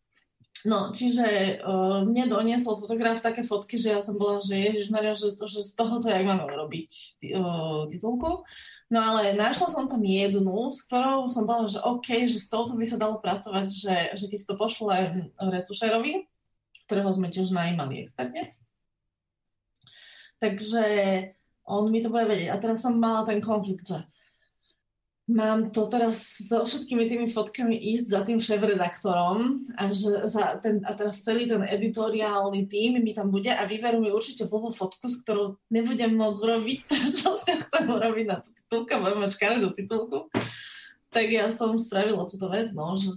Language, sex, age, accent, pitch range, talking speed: Czech, female, 20-39, native, 190-230 Hz, 170 wpm